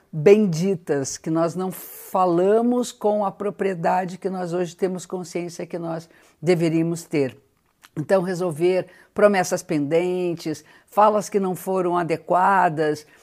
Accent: Brazilian